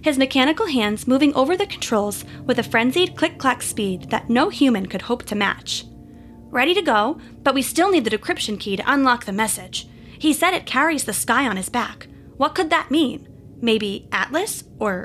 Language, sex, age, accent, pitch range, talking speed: English, female, 20-39, American, 210-300 Hz, 195 wpm